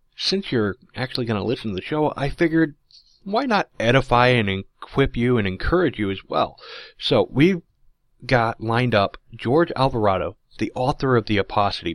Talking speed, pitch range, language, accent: 170 wpm, 110-145 Hz, English, American